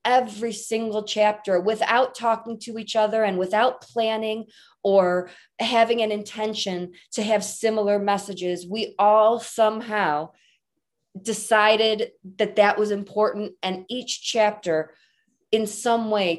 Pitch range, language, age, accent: 175-215 Hz, English, 20-39, American